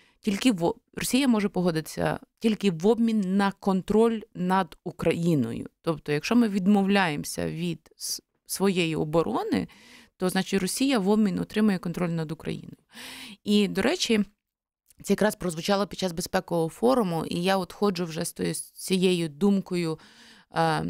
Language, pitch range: Ukrainian, 170-210 Hz